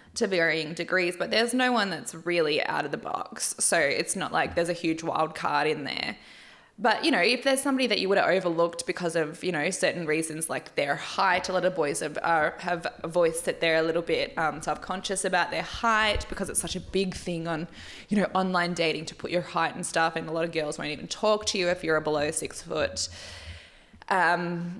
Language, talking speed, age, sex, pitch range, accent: English, 235 wpm, 20-39, female, 165-195 Hz, Australian